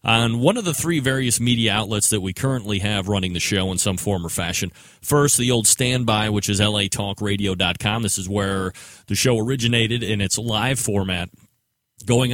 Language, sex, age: English, male, 30-49